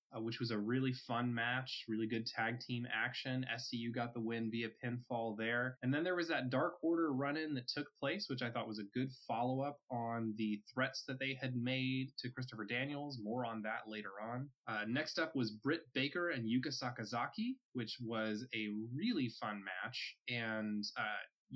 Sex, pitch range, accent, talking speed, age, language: male, 110-135 Hz, American, 190 wpm, 20-39, English